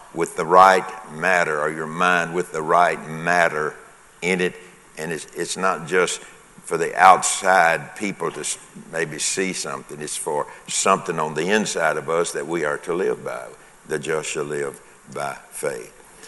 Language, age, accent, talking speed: English, 60-79, American, 170 wpm